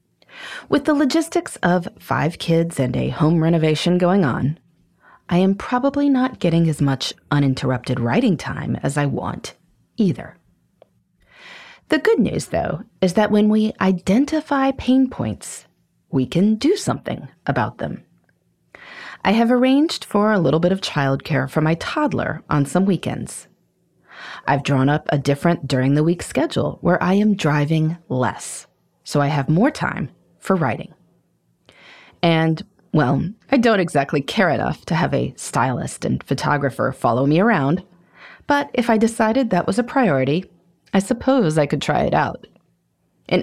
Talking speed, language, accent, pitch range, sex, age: 150 wpm, English, American, 145-225 Hz, female, 30-49